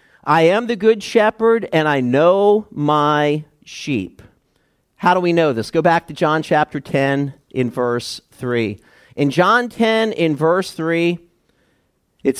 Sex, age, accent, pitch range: male, 50-69, American, 130-190 Hz